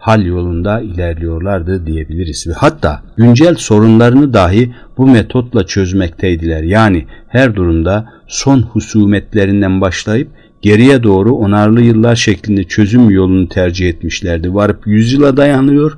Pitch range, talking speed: 85-110 Hz, 115 wpm